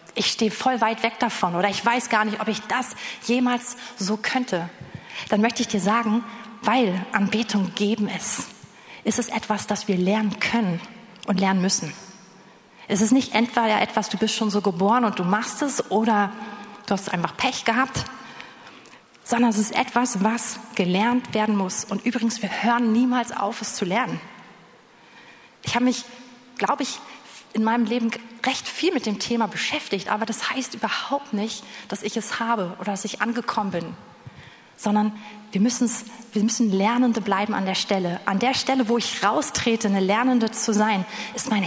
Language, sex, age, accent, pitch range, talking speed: German, female, 30-49, German, 205-235 Hz, 175 wpm